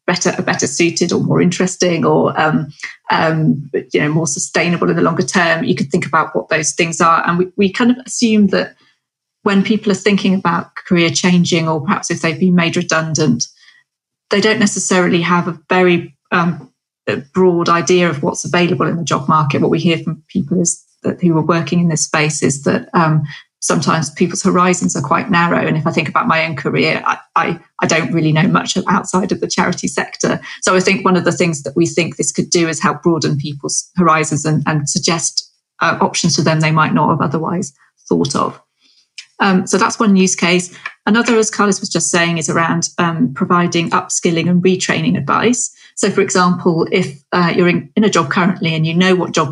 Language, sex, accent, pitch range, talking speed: English, female, British, 160-185 Hz, 205 wpm